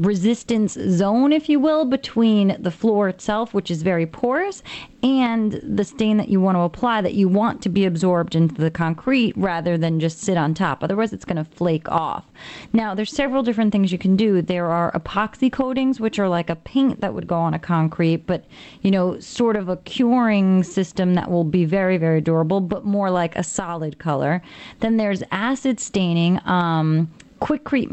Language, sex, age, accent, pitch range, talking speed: English, female, 30-49, American, 175-220 Hz, 195 wpm